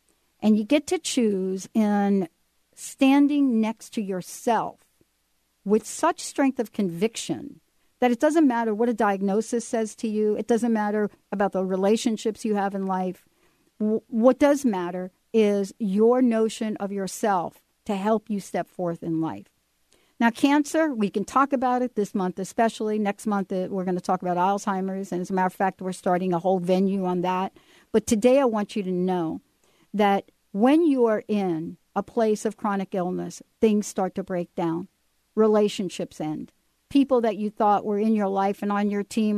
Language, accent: English, American